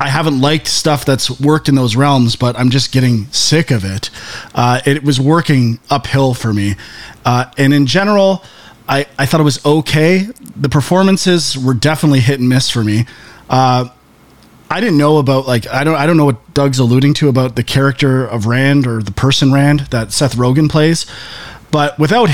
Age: 30-49